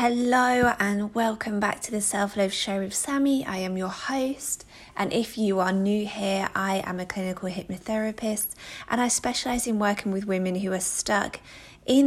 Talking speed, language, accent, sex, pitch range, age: 185 wpm, English, British, female, 180-215 Hz, 20-39